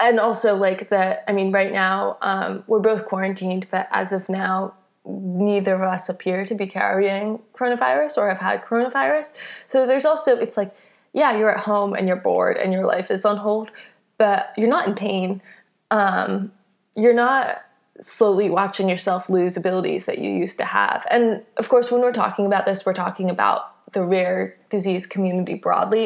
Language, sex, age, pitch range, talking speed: English, female, 20-39, 190-235 Hz, 185 wpm